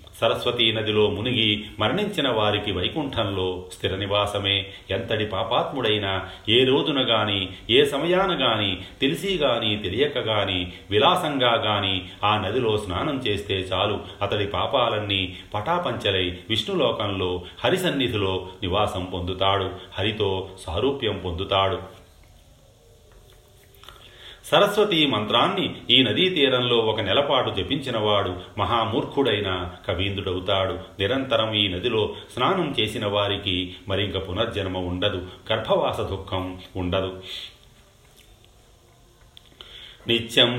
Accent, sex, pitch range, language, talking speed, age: native, male, 95-120 Hz, Telugu, 85 wpm, 40-59